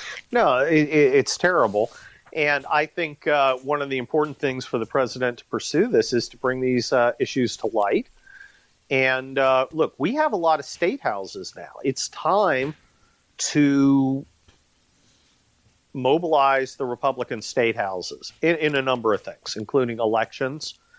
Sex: male